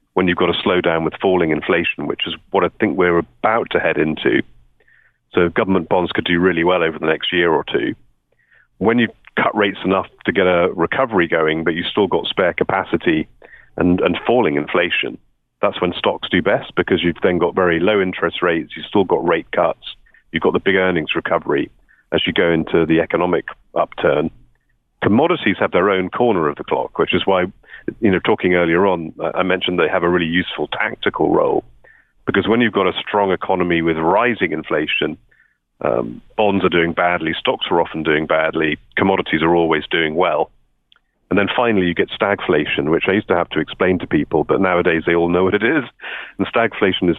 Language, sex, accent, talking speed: English, male, British, 205 wpm